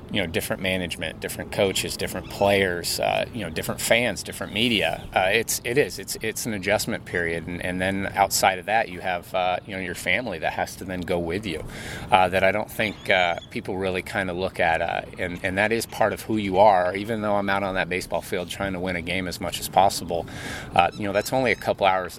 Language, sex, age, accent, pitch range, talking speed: English, male, 30-49, American, 90-105 Hz, 245 wpm